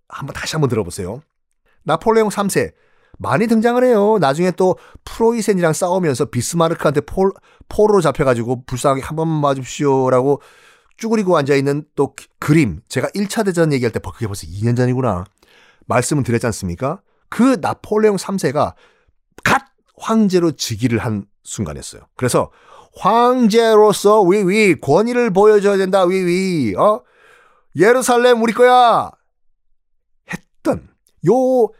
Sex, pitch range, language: male, 135-215 Hz, Korean